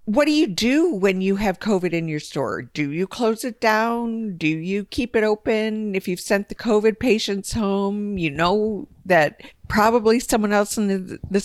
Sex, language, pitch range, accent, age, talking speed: female, English, 160-220 Hz, American, 50-69, 195 wpm